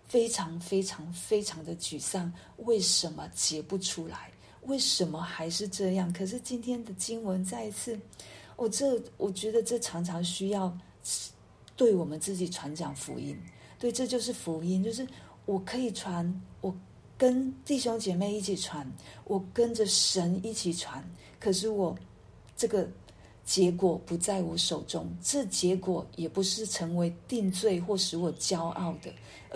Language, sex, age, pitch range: Chinese, female, 40-59, 165-205 Hz